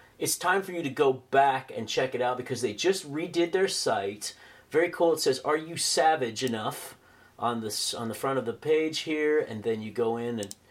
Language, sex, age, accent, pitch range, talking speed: English, male, 40-59, American, 125-195 Hz, 215 wpm